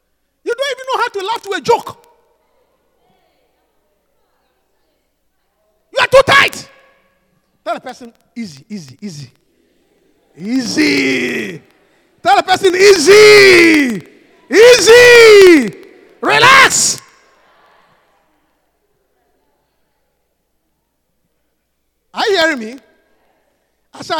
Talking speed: 80 wpm